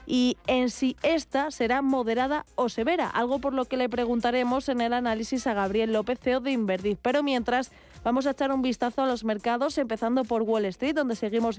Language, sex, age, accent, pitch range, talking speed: Spanish, female, 20-39, Spanish, 215-255 Hz, 200 wpm